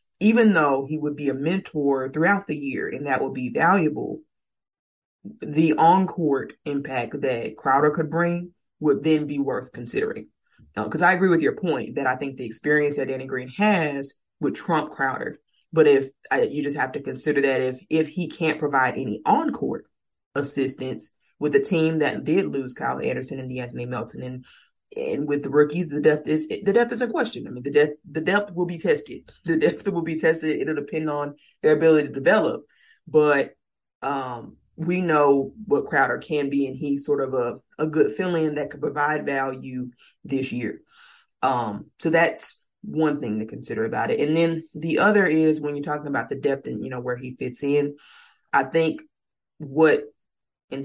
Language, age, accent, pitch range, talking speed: English, 20-39, American, 135-160 Hz, 190 wpm